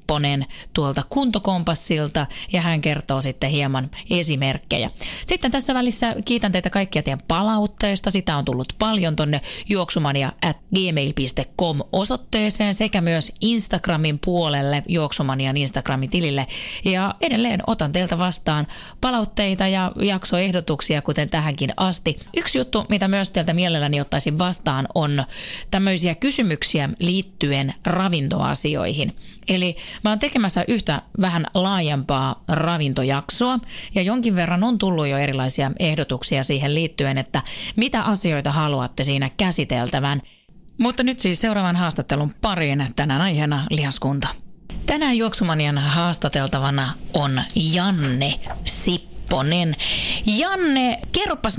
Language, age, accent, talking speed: Finnish, 30-49, native, 110 wpm